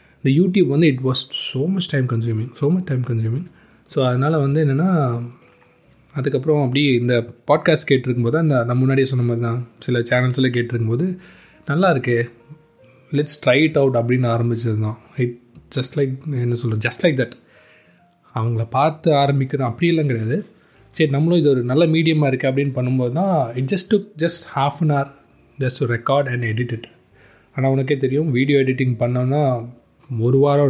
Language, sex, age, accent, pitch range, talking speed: Tamil, male, 20-39, native, 120-150 Hz, 170 wpm